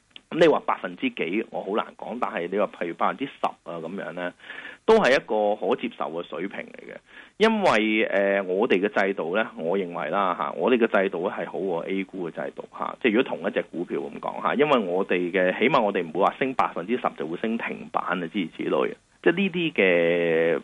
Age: 30-49